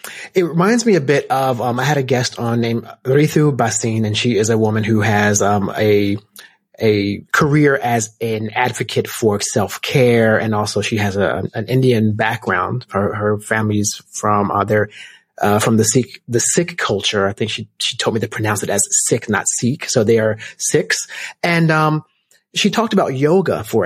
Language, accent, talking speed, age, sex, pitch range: English, American, 190 wpm, 30-49, male, 105-130 Hz